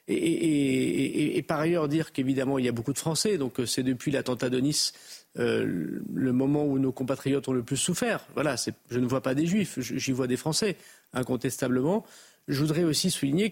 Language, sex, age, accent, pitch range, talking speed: French, male, 40-59, French, 125-150 Hz, 205 wpm